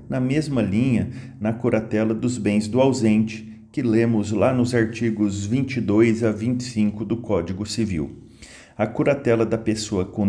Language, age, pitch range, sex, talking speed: Portuguese, 40-59, 105-125 Hz, male, 145 wpm